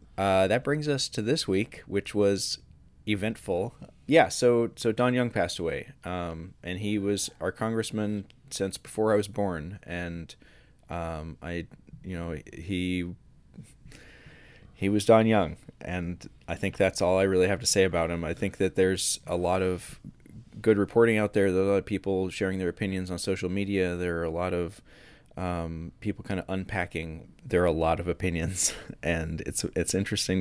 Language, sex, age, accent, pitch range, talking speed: English, male, 20-39, American, 85-105 Hz, 180 wpm